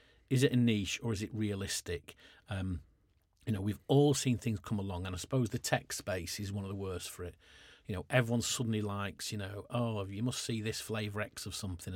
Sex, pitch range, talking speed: male, 95-120 Hz, 230 wpm